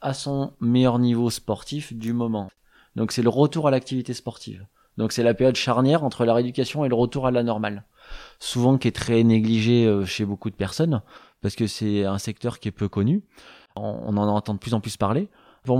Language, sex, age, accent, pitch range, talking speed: French, male, 20-39, French, 105-135 Hz, 210 wpm